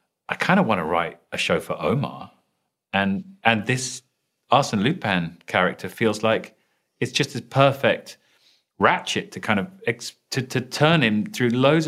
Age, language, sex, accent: 40-59, English, male, British